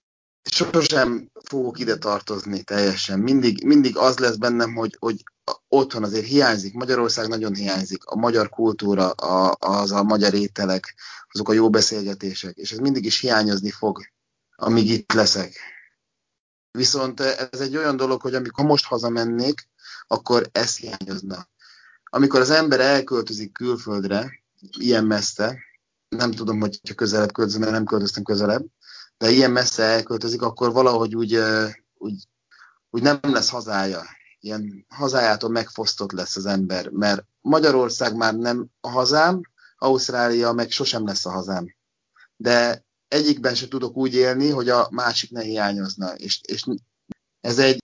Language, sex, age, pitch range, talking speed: Hungarian, male, 30-49, 100-125 Hz, 140 wpm